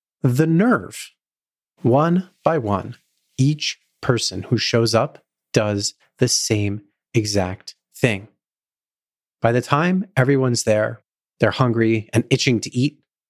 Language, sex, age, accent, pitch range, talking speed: English, male, 30-49, American, 110-140 Hz, 115 wpm